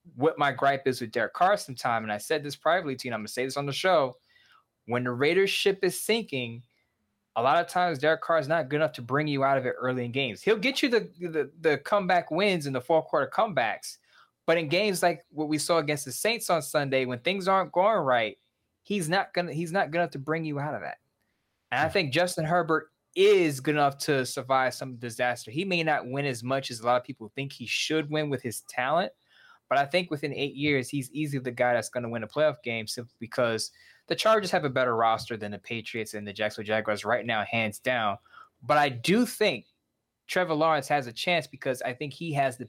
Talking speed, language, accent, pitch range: 245 wpm, English, American, 120-160 Hz